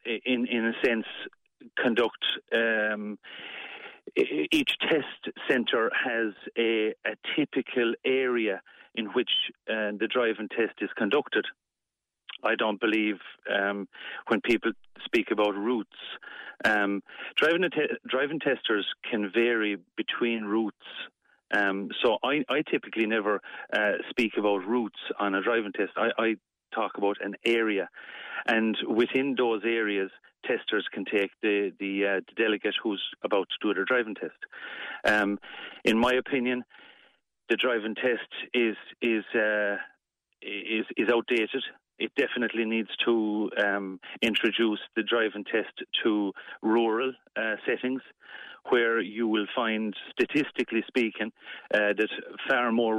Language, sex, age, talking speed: English, male, 40-59, 130 wpm